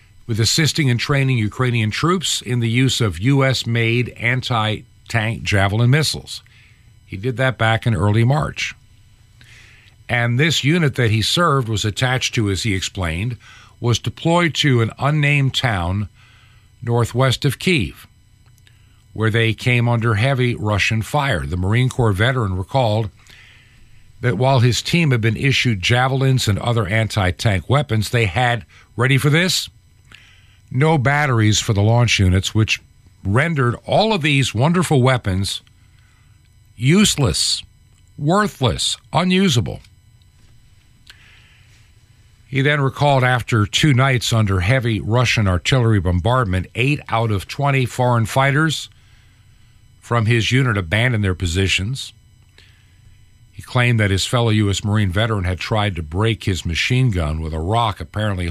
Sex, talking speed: male, 130 wpm